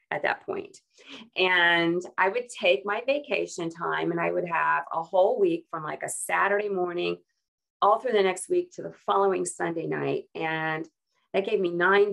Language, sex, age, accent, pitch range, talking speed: English, female, 40-59, American, 145-200 Hz, 185 wpm